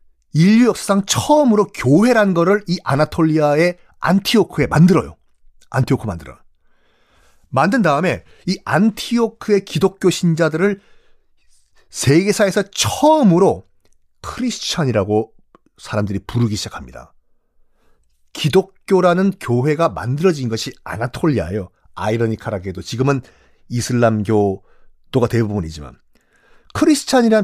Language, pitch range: Korean, 115-190 Hz